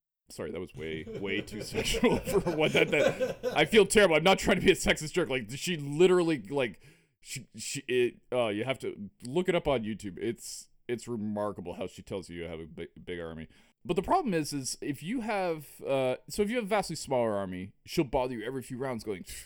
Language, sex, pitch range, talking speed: English, male, 105-170 Hz, 235 wpm